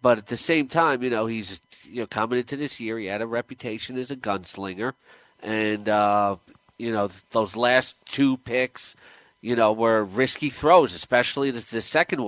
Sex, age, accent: male, 40-59, American